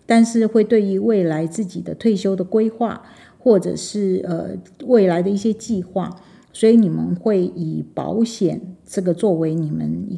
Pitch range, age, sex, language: 170-205 Hz, 50-69, female, Chinese